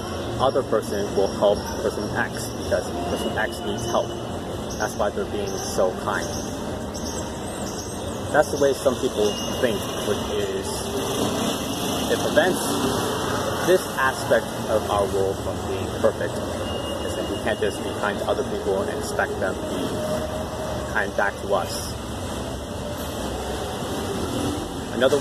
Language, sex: English, male